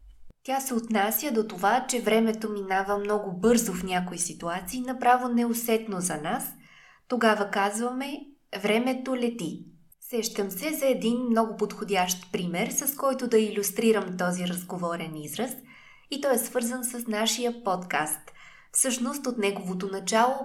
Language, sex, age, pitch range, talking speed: Bulgarian, female, 20-39, 185-240 Hz, 135 wpm